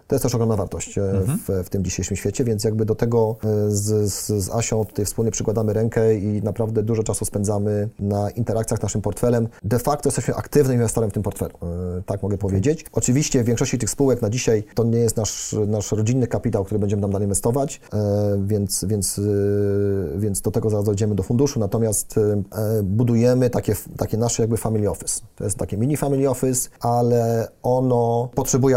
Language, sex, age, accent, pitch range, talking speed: Polish, male, 30-49, native, 105-120 Hz, 180 wpm